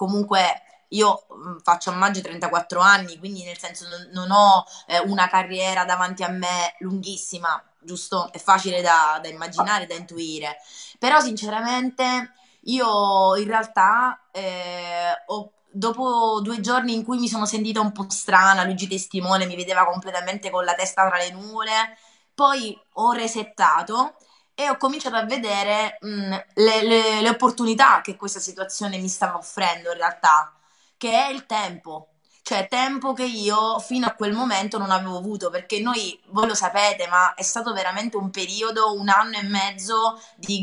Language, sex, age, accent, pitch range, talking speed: Italian, female, 20-39, native, 185-225 Hz, 155 wpm